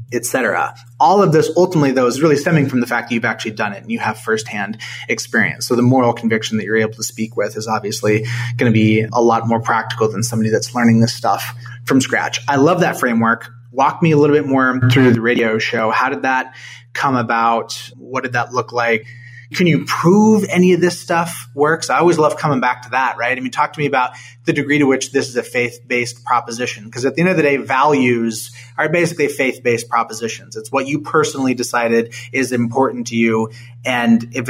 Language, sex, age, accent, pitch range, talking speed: English, male, 30-49, American, 115-135 Hz, 225 wpm